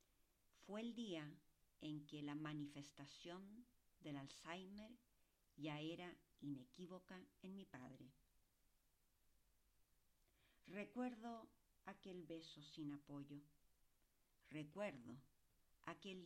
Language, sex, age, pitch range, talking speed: English, female, 50-69, 145-195 Hz, 80 wpm